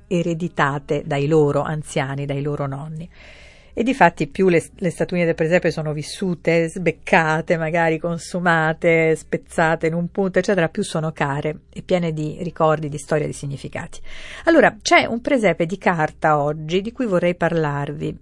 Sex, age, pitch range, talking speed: female, 50-69, 160-205 Hz, 160 wpm